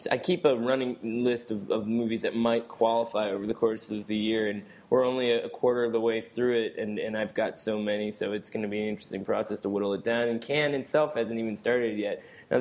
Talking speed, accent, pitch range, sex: 250 wpm, American, 110-125 Hz, male